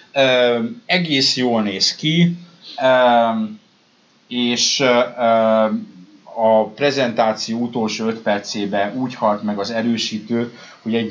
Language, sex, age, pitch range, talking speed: Hungarian, male, 30-49, 100-130 Hz, 110 wpm